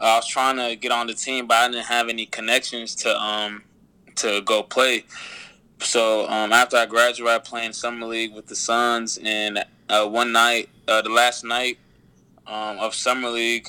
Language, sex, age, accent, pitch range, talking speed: English, male, 20-39, American, 110-115 Hz, 185 wpm